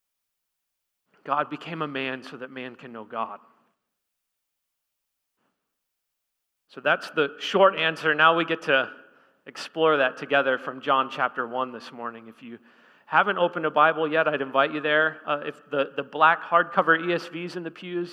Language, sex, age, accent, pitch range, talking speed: English, male, 40-59, American, 135-180 Hz, 160 wpm